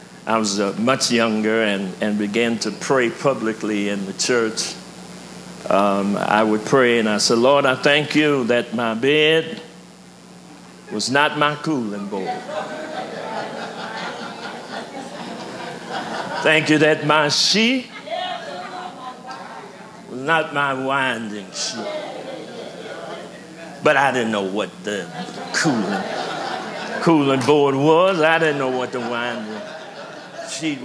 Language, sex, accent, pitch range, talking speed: English, male, American, 115-160 Hz, 120 wpm